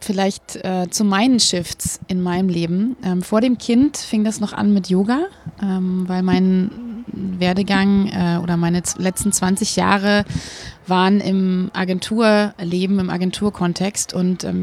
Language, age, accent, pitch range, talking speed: German, 30-49, German, 185-205 Hz, 145 wpm